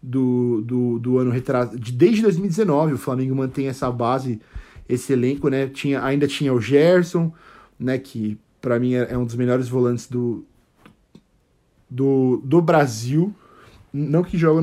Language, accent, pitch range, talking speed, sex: Portuguese, Brazilian, 130-165 Hz, 155 wpm, male